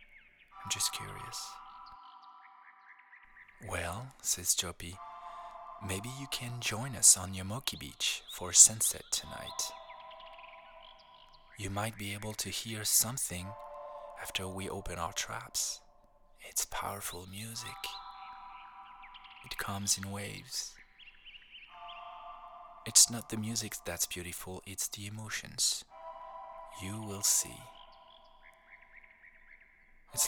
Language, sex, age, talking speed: English, male, 20-39, 95 wpm